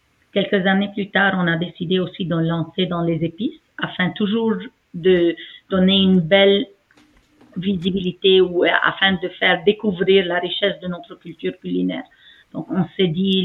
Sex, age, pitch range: female, 40-59, 175-190 Hz